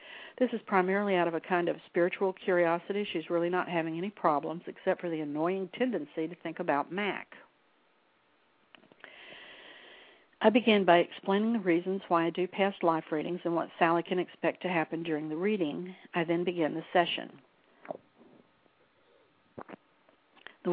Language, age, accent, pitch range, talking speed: English, 60-79, American, 160-190 Hz, 155 wpm